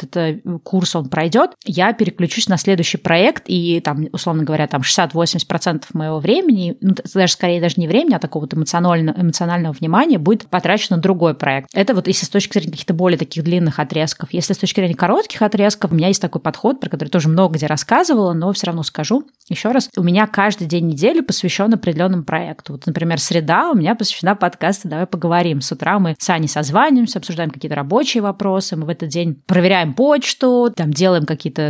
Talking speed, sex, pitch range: 195 wpm, female, 165-205 Hz